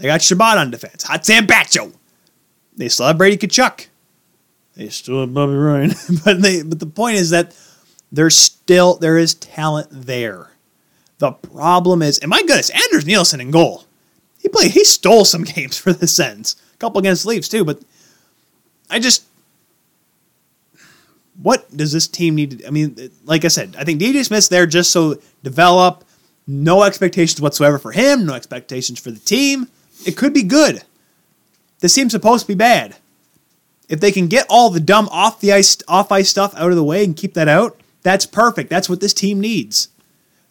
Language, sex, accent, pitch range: English, male, American, 155-195 Hz